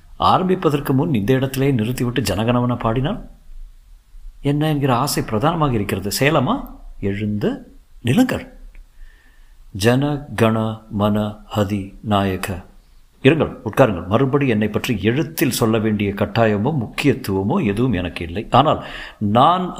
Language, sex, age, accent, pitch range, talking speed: Tamil, male, 50-69, native, 105-145 Hz, 90 wpm